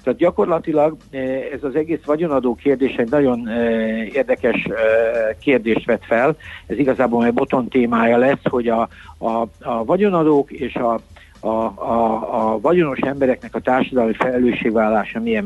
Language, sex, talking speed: Hungarian, male, 135 wpm